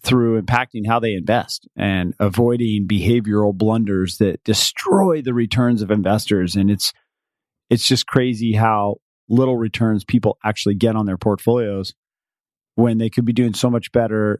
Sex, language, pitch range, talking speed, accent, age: male, English, 105-125 Hz, 155 wpm, American, 40-59